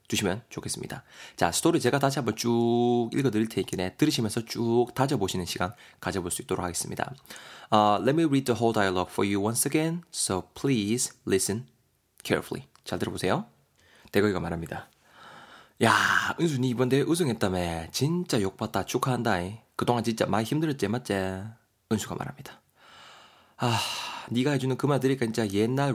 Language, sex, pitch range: Korean, male, 105-135 Hz